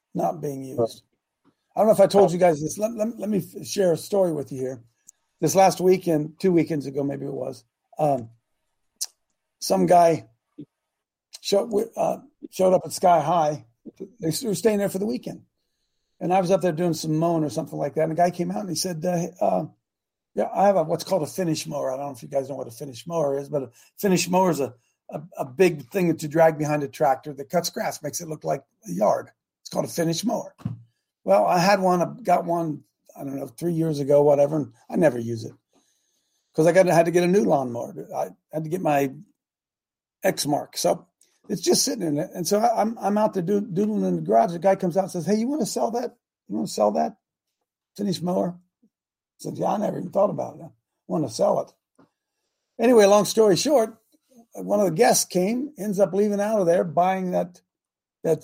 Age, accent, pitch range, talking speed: 50-69, American, 150-200 Hz, 225 wpm